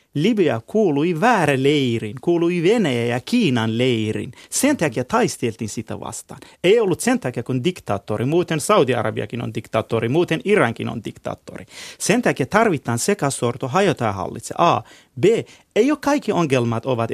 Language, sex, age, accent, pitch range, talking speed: Finnish, male, 30-49, native, 125-170 Hz, 145 wpm